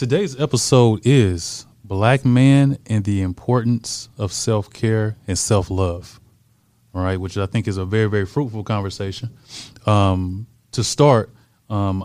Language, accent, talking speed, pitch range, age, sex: English, American, 130 wpm, 100-115 Hz, 20-39, male